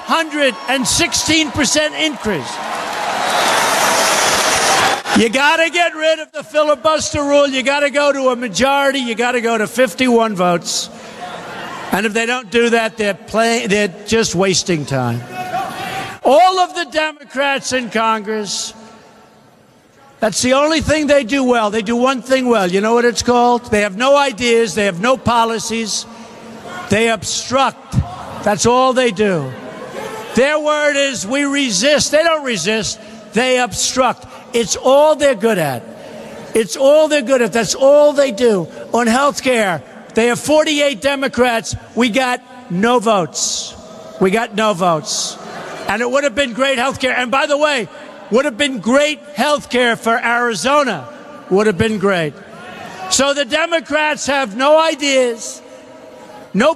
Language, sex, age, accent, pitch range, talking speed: English, male, 60-79, American, 220-285 Hz, 150 wpm